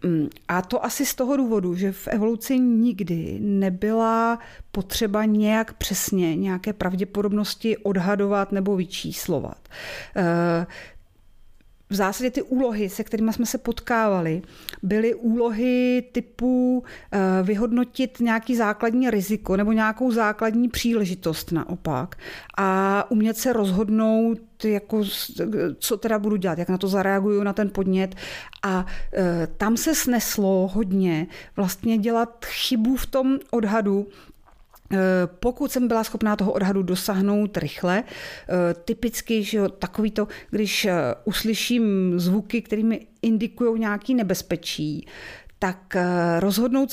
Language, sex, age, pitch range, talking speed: Czech, female, 40-59, 190-230 Hz, 120 wpm